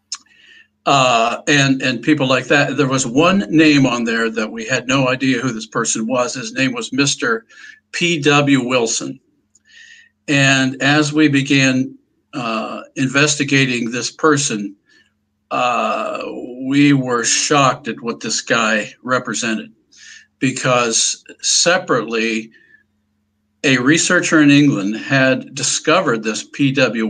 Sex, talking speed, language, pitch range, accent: male, 120 wpm, English, 120-150 Hz, American